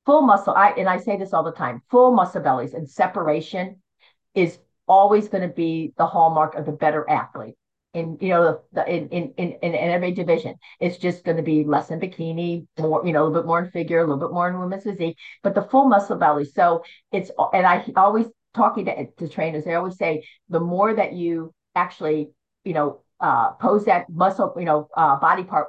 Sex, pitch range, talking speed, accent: female, 160-195 Hz, 215 wpm, American